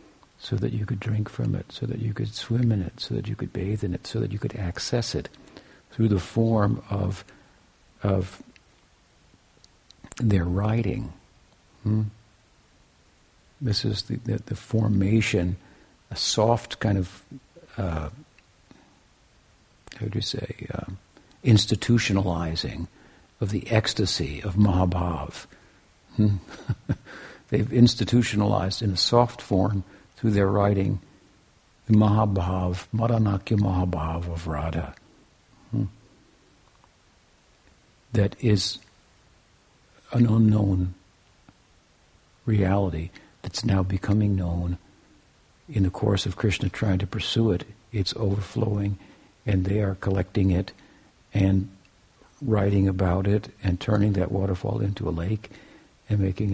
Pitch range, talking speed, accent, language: 95-110 Hz, 120 wpm, American, English